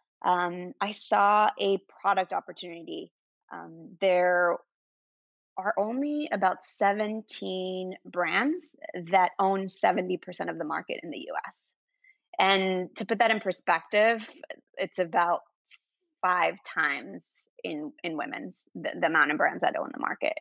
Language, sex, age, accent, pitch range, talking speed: English, female, 20-39, American, 175-205 Hz, 130 wpm